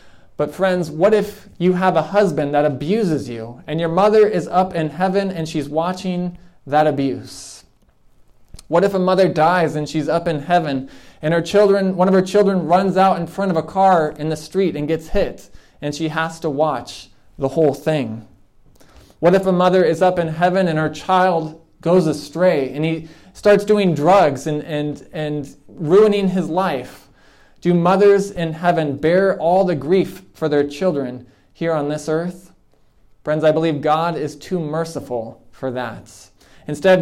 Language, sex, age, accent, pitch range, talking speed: English, male, 20-39, American, 145-180 Hz, 180 wpm